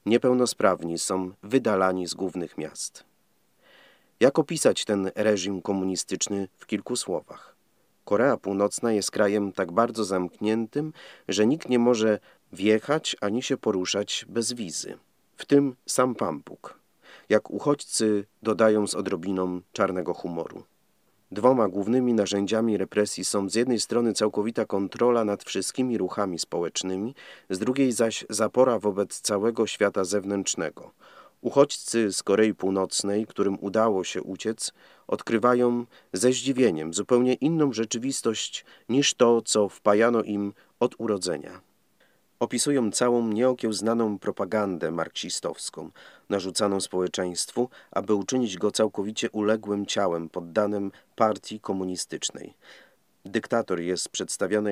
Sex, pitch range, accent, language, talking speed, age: male, 100-120 Hz, native, Polish, 115 wpm, 40-59